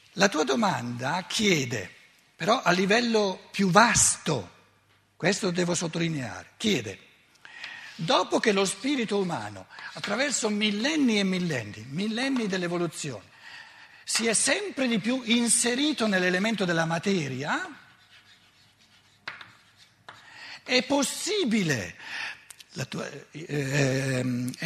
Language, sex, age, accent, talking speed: Italian, male, 60-79, native, 90 wpm